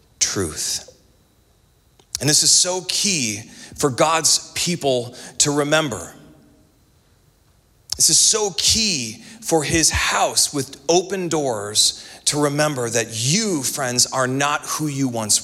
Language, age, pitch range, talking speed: English, 40-59, 155-215 Hz, 120 wpm